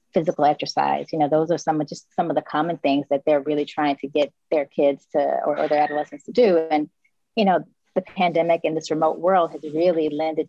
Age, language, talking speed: 30-49, English, 235 wpm